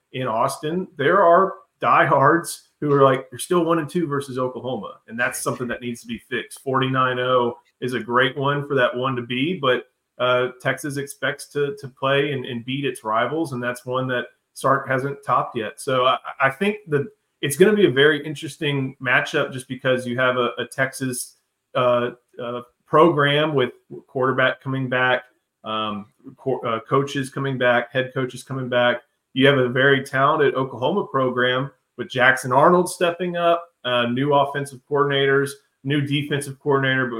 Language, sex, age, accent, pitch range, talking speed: English, male, 30-49, American, 120-140 Hz, 175 wpm